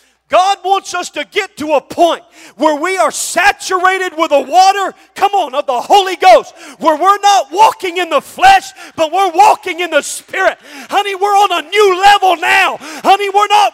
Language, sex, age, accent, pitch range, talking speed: English, male, 40-59, American, 320-395 Hz, 190 wpm